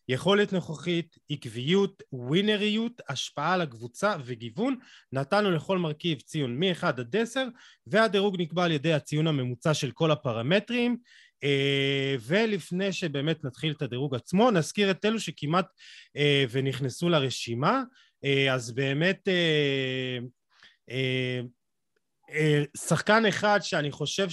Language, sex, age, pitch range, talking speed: Hebrew, male, 30-49, 130-180 Hz, 105 wpm